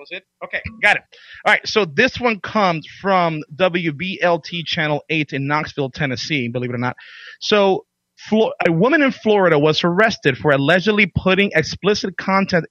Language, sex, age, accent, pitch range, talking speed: English, male, 30-49, American, 145-195 Hz, 160 wpm